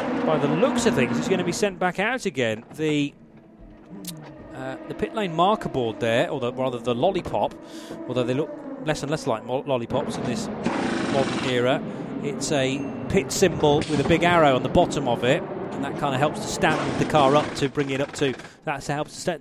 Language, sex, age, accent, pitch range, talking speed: English, male, 30-49, British, 140-190 Hz, 220 wpm